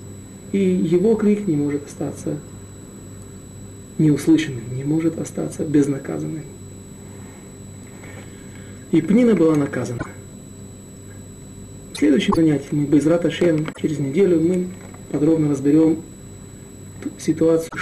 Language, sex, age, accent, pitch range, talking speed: Russian, male, 40-59, native, 125-170 Hz, 90 wpm